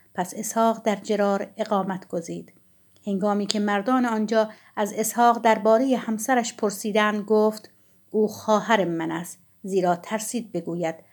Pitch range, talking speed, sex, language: 190-225 Hz, 125 wpm, female, Persian